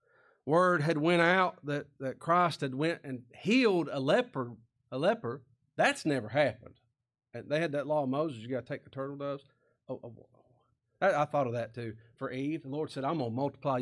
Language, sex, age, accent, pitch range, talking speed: English, male, 40-59, American, 120-170 Hz, 210 wpm